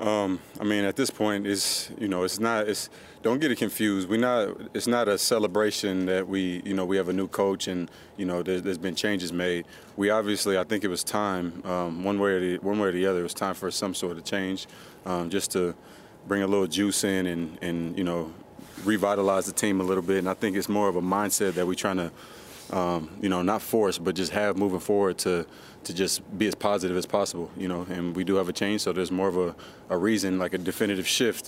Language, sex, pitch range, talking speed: English, male, 90-100 Hz, 245 wpm